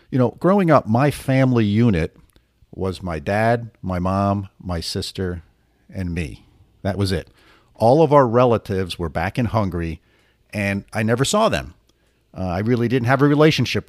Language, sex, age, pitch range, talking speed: English, male, 50-69, 95-125 Hz, 170 wpm